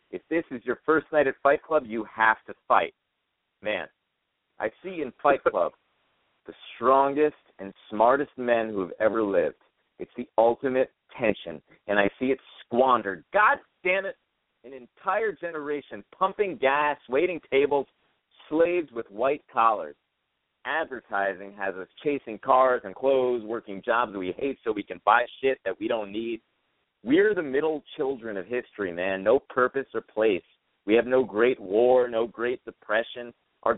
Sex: male